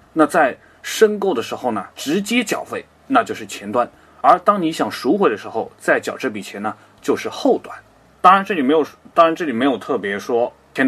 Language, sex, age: Chinese, male, 20-39